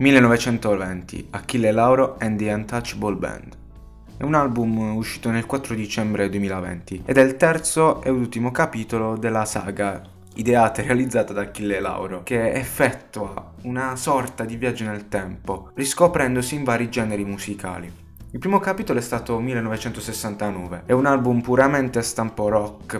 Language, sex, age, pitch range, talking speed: Italian, male, 20-39, 100-130 Hz, 145 wpm